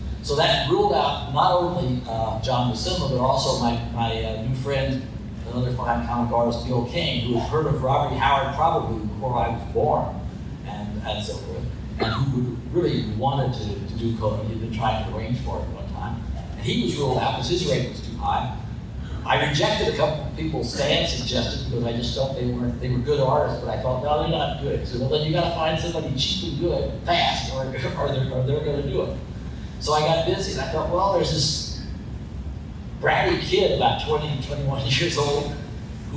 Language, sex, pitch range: English, male, 115-145 Hz